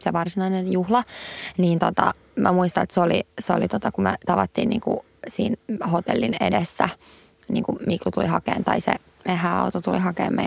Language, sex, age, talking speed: English, female, 20-39, 190 wpm